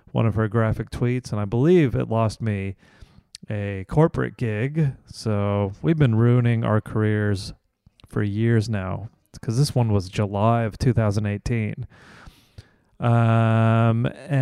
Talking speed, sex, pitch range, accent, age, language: 125 wpm, male, 110-130 Hz, American, 30-49, English